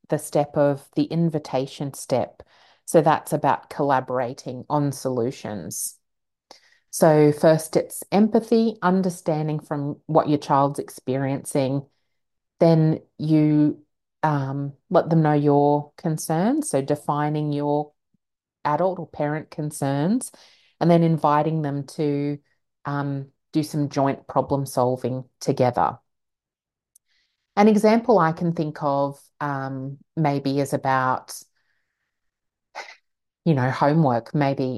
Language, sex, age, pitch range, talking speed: English, female, 30-49, 135-155 Hz, 105 wpm